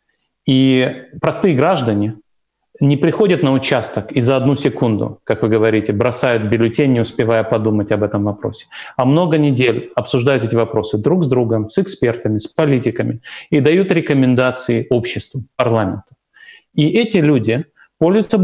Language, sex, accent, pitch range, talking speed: Russian, male, native, 115-145 Hz, 145 wpm